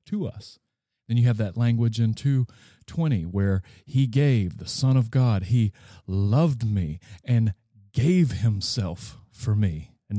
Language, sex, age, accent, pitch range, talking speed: English, male, 40-59, American, 100-130 Hz, 145 wpm